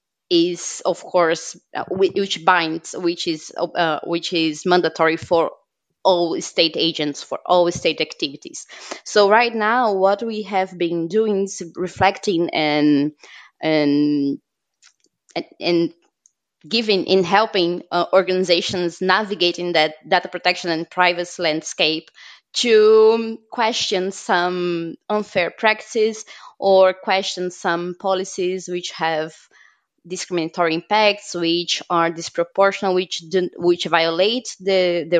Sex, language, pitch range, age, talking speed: female, English, 170-195 Hz, 20-39, 115 wpm